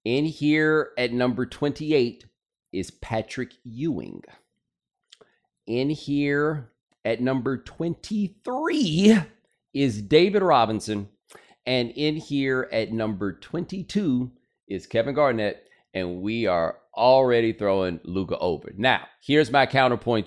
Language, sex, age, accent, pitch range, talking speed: English, male, 30-49, American, 120-155 Hz, 105 wpm